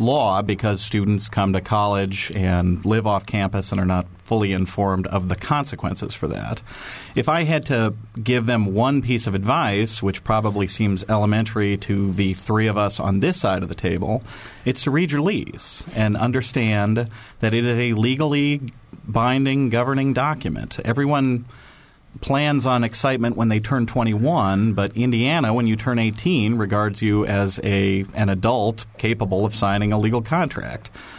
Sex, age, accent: male, 40-59, American